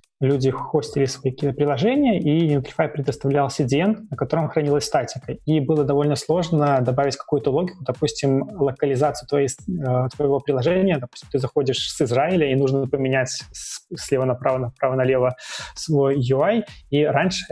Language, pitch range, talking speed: Russian, 135-155 Hz, 135 wpm